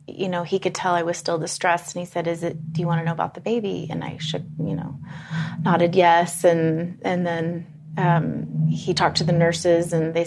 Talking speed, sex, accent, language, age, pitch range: 235 wpm, female, American, English, 30-49, 160-180 Hz